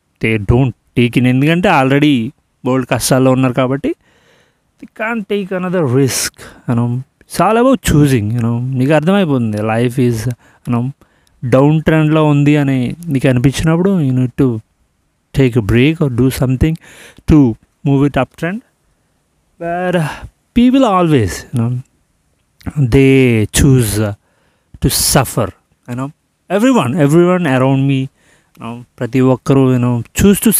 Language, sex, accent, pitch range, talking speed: Telugu, male, native, 120-160 Hz, 140 wpm